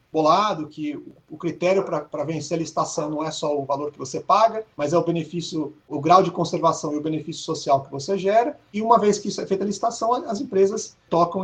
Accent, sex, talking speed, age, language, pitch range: Brazilian, male, 225 wpm, 40-59, Portuguese, 150-195 Hz